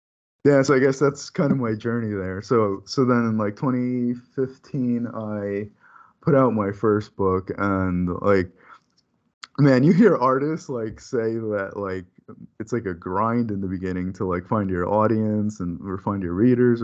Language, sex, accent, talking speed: English, male, American, 175 wpm